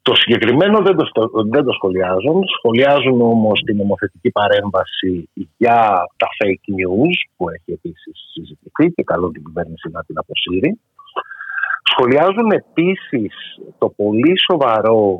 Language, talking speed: Greek, 120 wpm